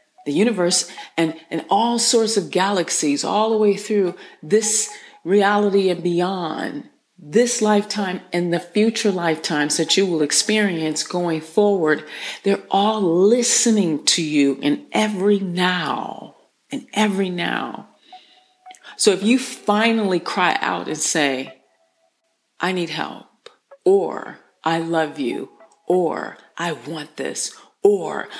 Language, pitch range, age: English, 165-235 Hz, 40-59